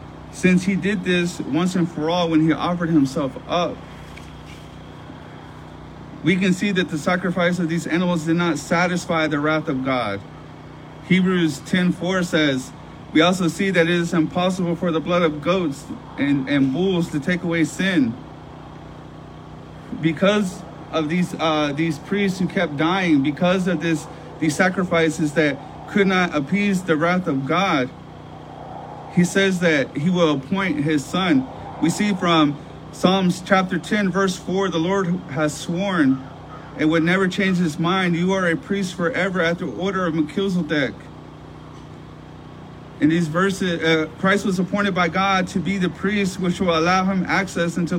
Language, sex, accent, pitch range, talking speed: English, male, American, 155-185 Hz, 160 wpm